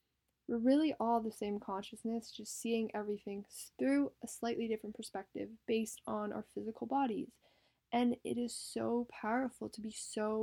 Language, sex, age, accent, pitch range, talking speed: English, female, 10-29, American, 200-235 Hz, 155 wpm